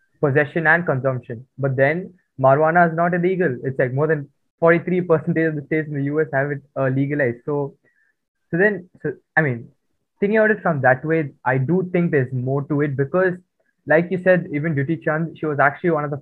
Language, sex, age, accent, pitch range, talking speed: English, male, 20-39, Indian, 130-160 Hz, 210 wpm